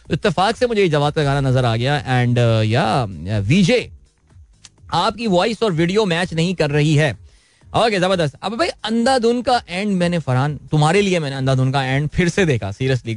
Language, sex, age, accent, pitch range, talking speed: Hindi, male, 20-39, native, 130-195 Hz, 175 wpm